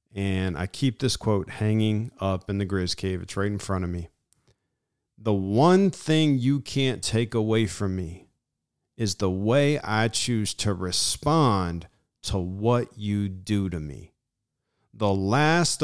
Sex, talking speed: male, 155 wpm